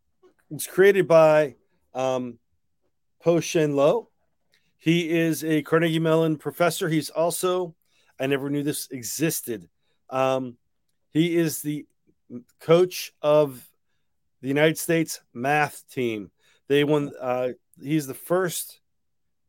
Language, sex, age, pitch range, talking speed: English, male, 40-59, 130-155 Hz, 115 wpm